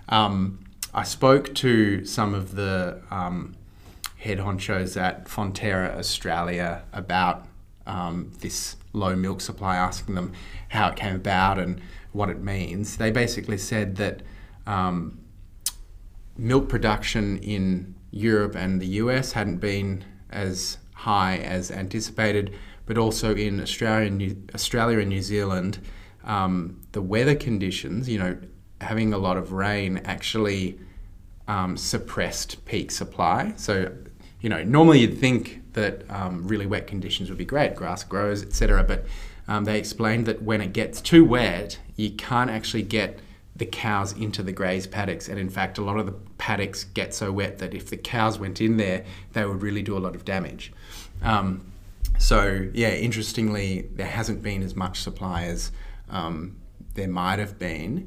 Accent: Australian